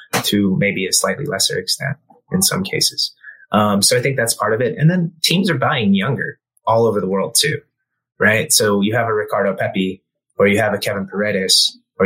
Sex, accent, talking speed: male, American, 210 wpm